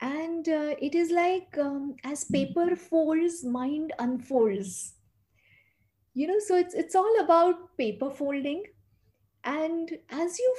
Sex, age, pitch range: female, 50-69, 215-310 Hz